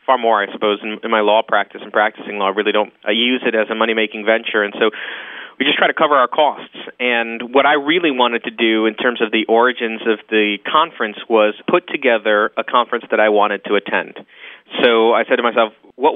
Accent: American